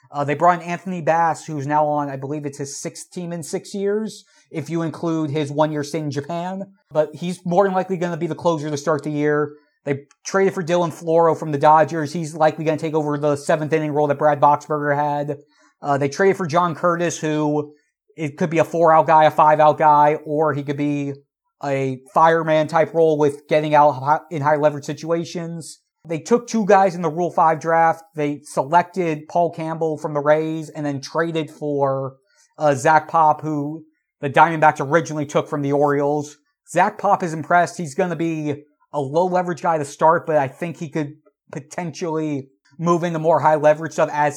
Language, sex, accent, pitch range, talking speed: English, male, American, 150-170 Hz, 200 wpm